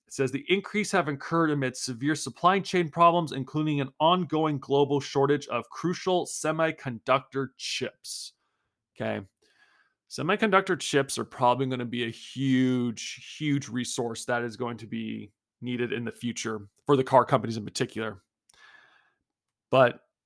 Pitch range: 125-160 Hz